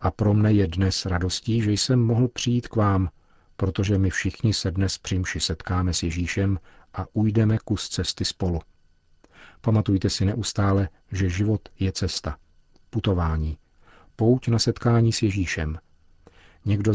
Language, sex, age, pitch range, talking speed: Czech, male, 50-69, 85-105 Hz, 140 wpm